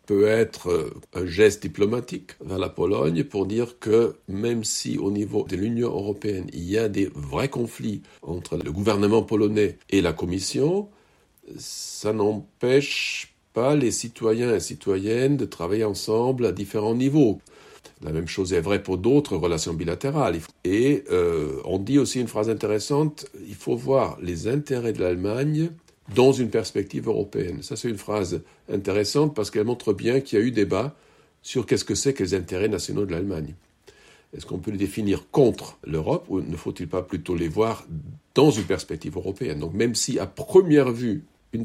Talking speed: 175 wpm